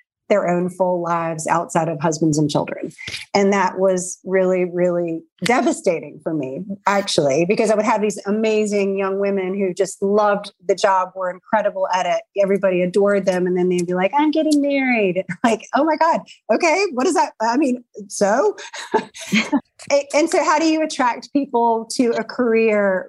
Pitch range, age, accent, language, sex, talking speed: 185-230 Hz, 30-49, American, English, female, 175 wpm